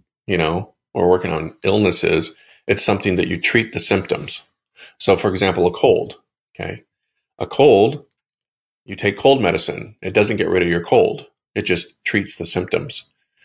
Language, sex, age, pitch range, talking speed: English, male, 40-59, 85-100 Hz, 165 wpm